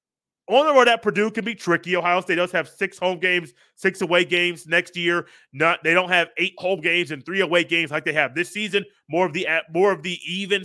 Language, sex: English, male